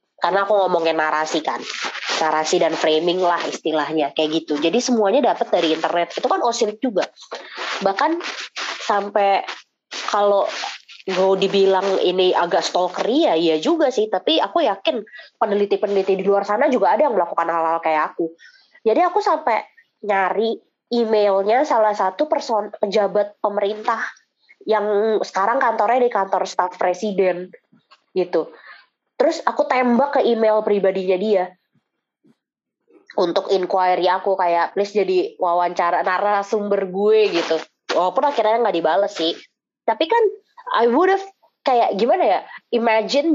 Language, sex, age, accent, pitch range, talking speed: Indonesian, female, 20-39, native, 185-255 Hz, 130 wpm